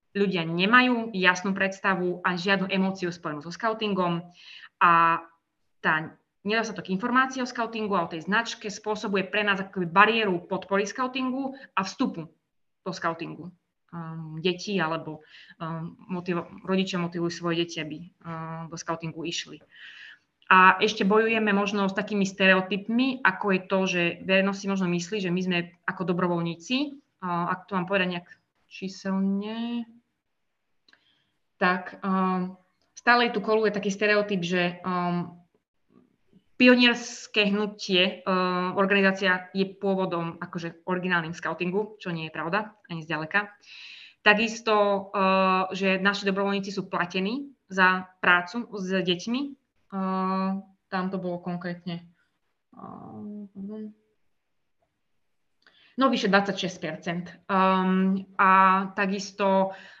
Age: 20-39